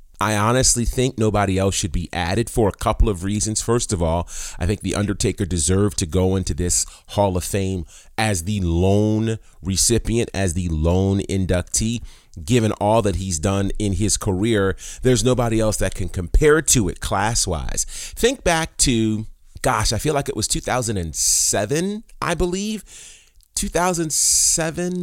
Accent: American